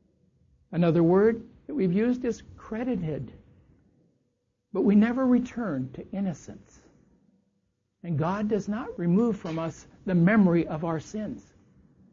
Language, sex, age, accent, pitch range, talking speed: English, male, 60-79, American, 165-230 Hz, 125 wpm